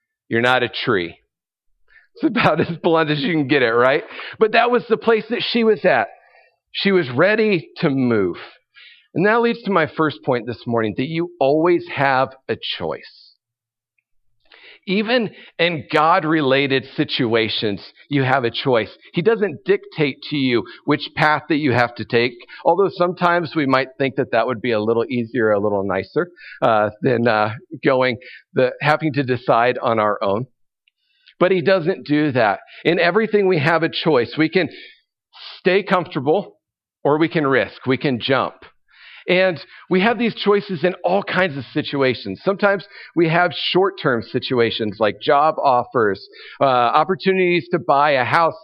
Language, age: English, 50-69